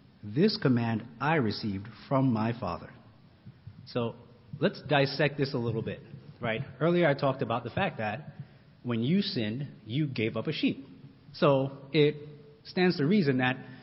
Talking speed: 155 wpm